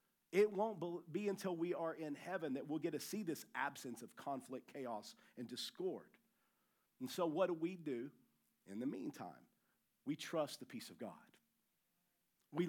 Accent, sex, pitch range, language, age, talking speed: American, male, 160-215 Hz, English, 50-69, 170 wpm